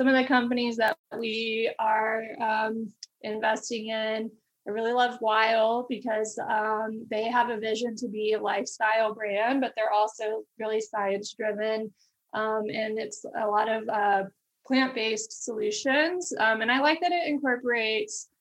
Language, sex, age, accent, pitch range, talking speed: English, female, 20-39, American, 215-240 Hz, 150 wpm